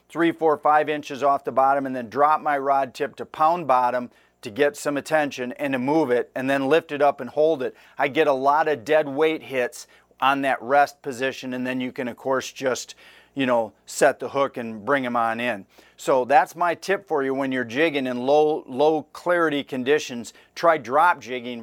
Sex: male